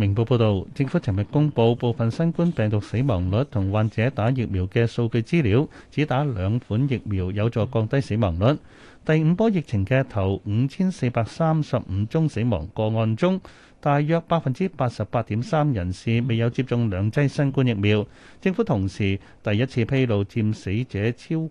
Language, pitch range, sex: Chinese, 105-140 Hz, male